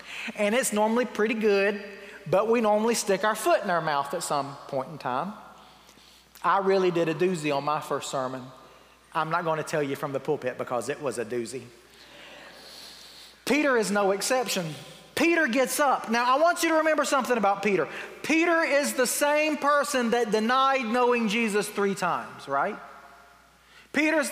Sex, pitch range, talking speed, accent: male, 150-240 Hz, 175 wpm, American